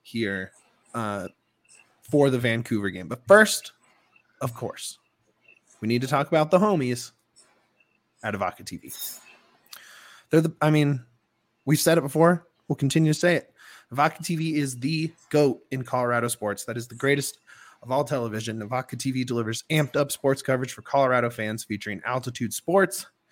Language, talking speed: English, 155 wpm